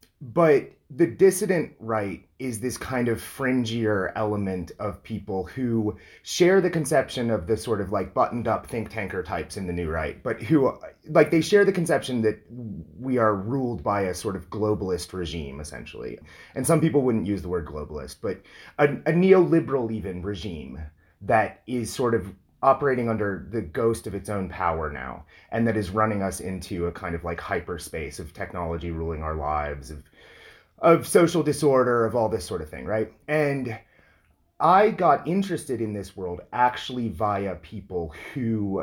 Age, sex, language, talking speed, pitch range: 30-49, male, English, 175 wpm, 90-125 Hz